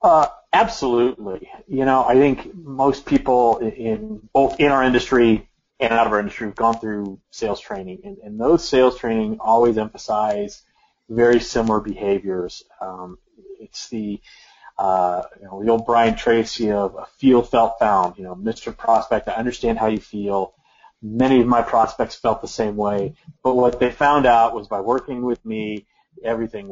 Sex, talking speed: male, 175 wpm